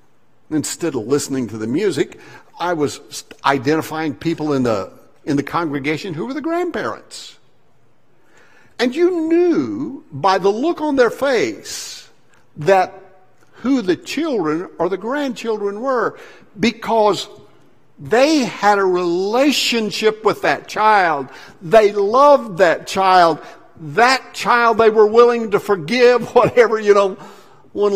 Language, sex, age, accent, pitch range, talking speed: English, male, 60-79, American, 155-240 Hz, 125 wpm